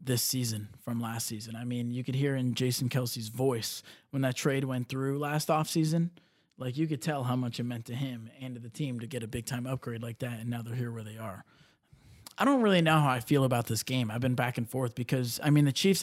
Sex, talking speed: male, 260 wpm